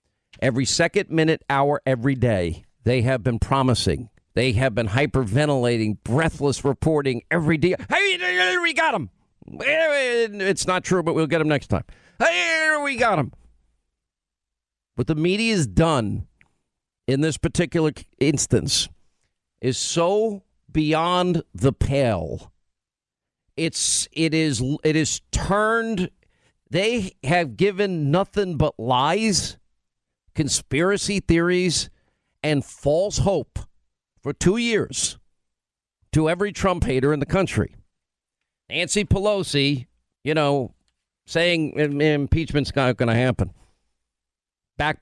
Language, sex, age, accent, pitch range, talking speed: English, male, 50-69, American, 130-180 Hz, 115 wpm